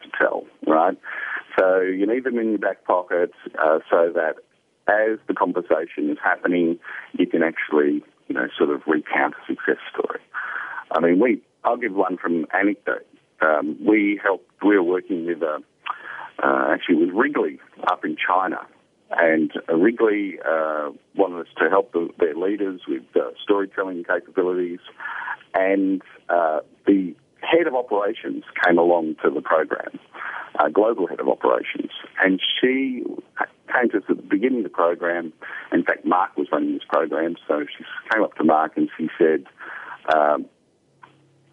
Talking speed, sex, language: 155 wpm, male, English